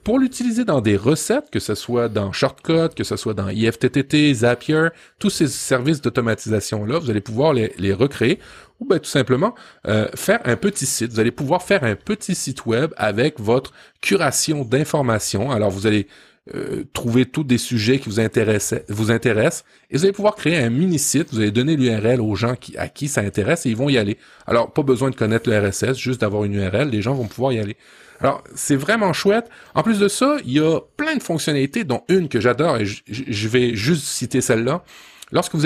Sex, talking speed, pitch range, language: male, 210 wpm, 110-155 Hz, French